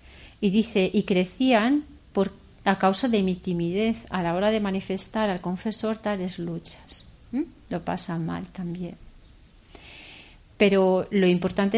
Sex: female